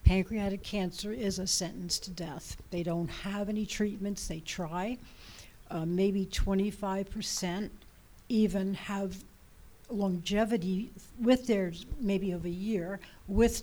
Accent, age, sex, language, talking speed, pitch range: American, 60-79, female, English, 120 wpm, 180-220 Hz